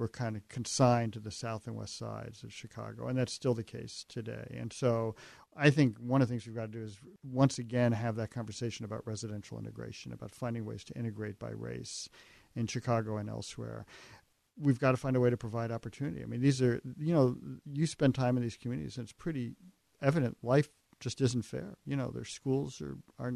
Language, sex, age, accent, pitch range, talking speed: English, male, 50-69, American, 115-130 Hz, 220 wpm